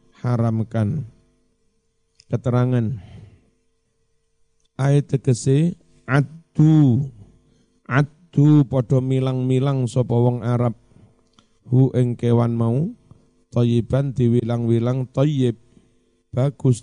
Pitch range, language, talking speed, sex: 115-135 Hz, Indonesian, 60 wpm, male